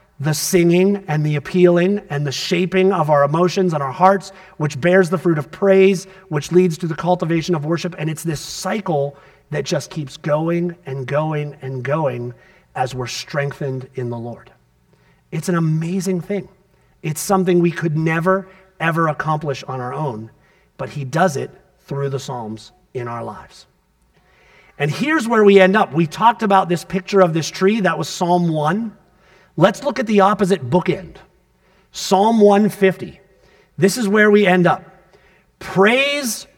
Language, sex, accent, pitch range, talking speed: English, male, American, 165-205 Hz, 165 wpm